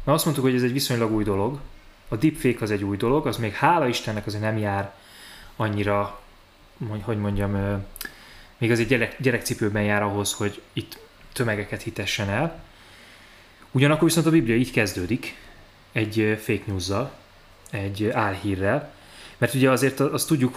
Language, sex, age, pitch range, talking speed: Hungarian, male, 20-39, 105-135 Hz, 150 wpm